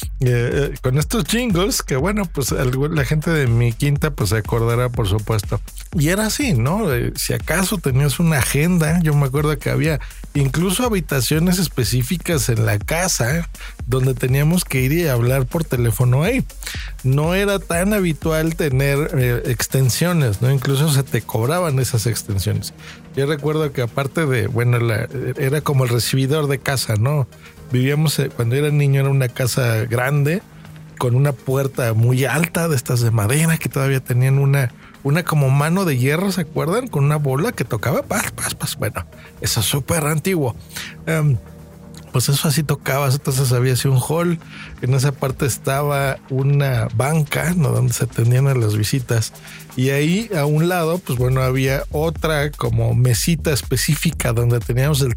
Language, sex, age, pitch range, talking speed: Spanish, male, 50-69, 125-155 Hz, 170 wpm